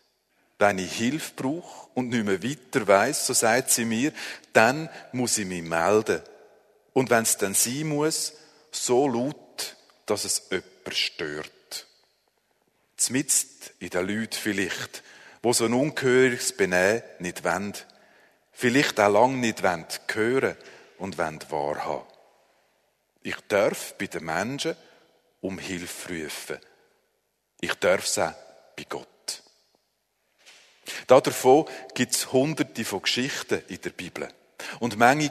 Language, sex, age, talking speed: German, male, 50-69, 130 wpm